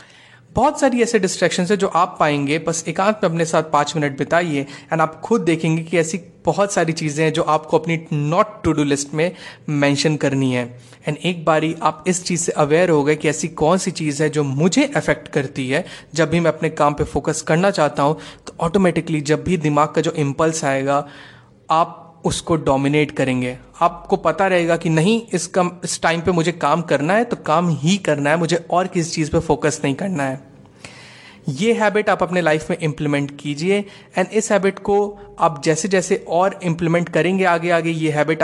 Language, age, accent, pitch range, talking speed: Hindi, 30-49, native, 150-185 Hz, 205 wpm